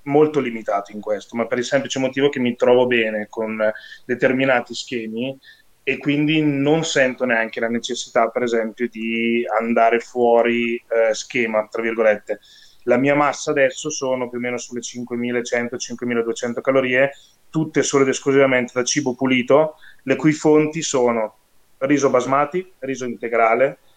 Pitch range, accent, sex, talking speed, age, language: 115-135 Hz, native, male, 145 wpm, 20-39, Italian